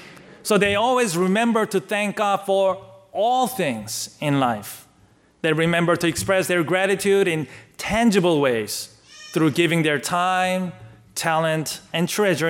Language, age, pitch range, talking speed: English, 30-49, 145-195 Hz, 135 wpm